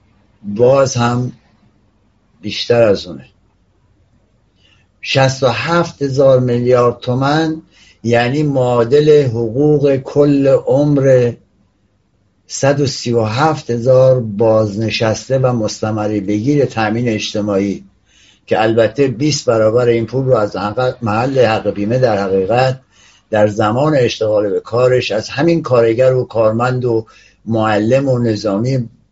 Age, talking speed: 60-79, 100 wpm